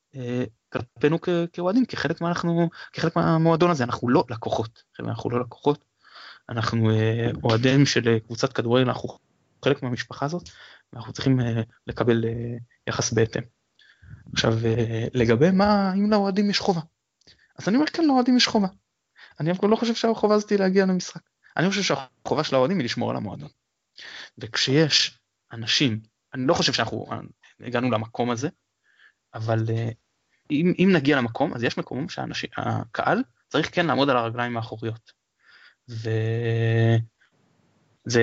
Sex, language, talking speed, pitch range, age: male, Hebrew, 130 wpm, 115-160 Hz, 20-39